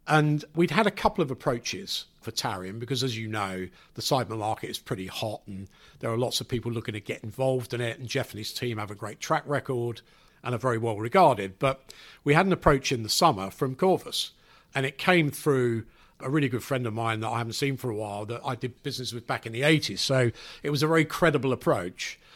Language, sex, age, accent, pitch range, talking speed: English, male, 50-69, British, 115-145 Hz, 240 wpm